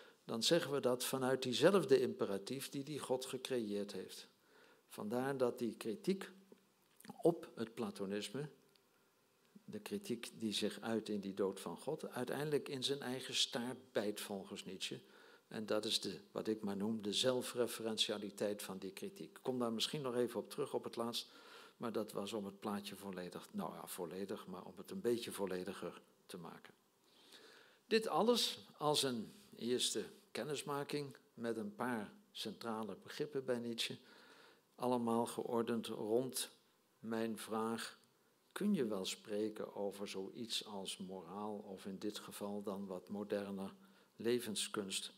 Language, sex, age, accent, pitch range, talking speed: English, male, 60-79, Dutch, 105-145 Hz, 150 wpm